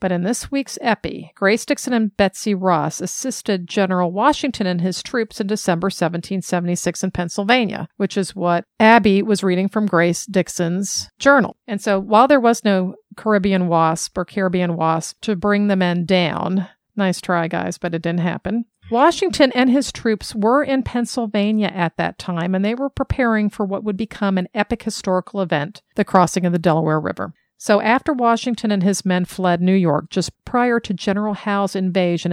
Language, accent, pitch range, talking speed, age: English, American, 180-220 Hz, 180 wpm, 50-69